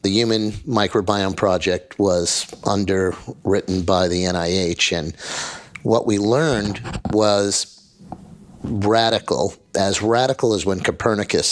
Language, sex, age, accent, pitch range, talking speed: English, male, 50-69, American, 95-110 Hz, 105 wpm